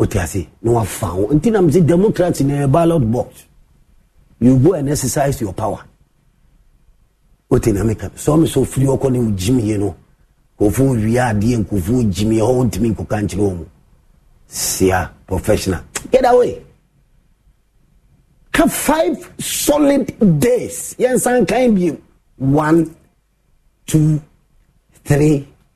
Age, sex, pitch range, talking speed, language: 50-69, male, 110-160 Hz, 125 wpm, English